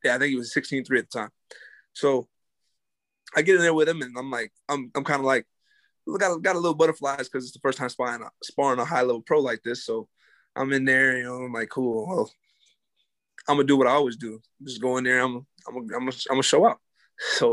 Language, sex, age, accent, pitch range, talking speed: English, male, 20-39, American, 135-165 Hz, 250 wpm